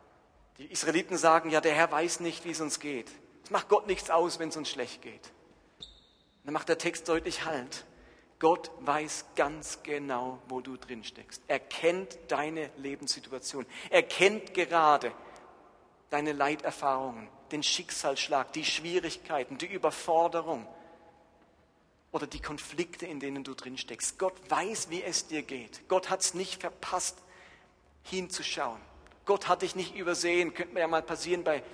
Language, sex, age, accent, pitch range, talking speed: German, male, 40-59, German, 130-165 Hz, 150 wpm